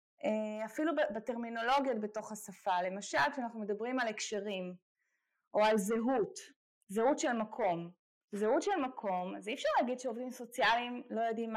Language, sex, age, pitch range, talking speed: Hebrew, female, 20-39, 210-280 Hz, 135 wpm